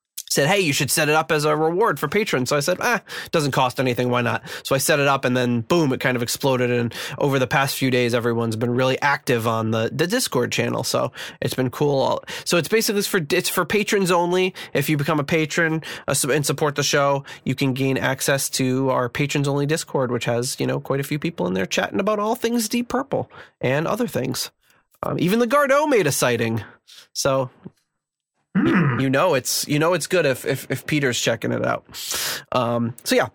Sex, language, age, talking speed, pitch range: male, English, 20-39, 220 wpm, 125-175 Hz